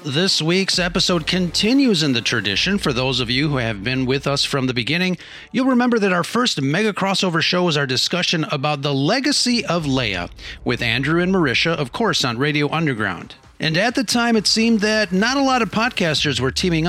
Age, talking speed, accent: 40-59, 205 wpm, American